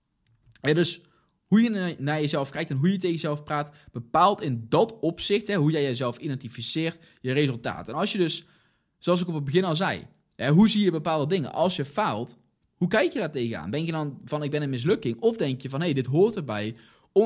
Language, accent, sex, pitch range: Dutch, Dutch, male, 130-175 Hz